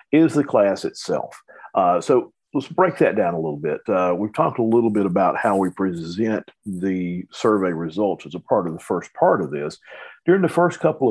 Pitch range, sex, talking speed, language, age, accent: 90-135 Hz, male, 210 wpm, English, 50-69, American